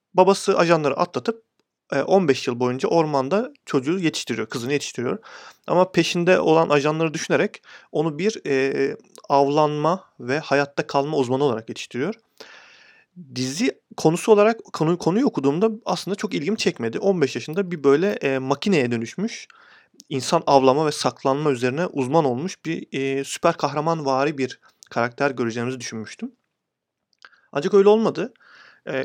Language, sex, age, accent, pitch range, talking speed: Turkish, male, 40-59, native, 130-175 Hz, 130 wpm